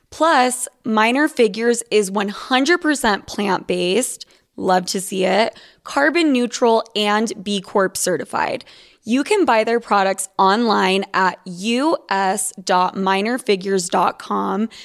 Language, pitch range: English, 190-235 Hz